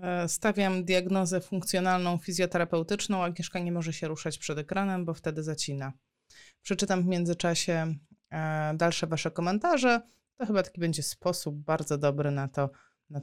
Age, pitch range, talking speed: 20-39, 155-190 Hz, 140 wpm